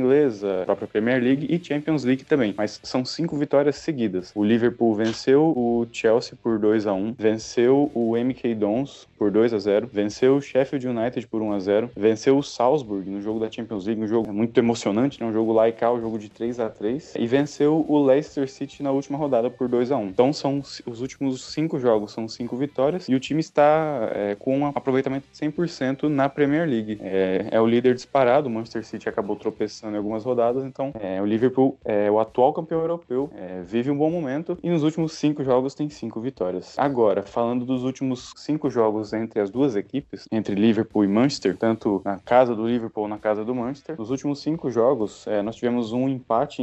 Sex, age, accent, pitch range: male, 20-39, Brazilian, 110-135 Hz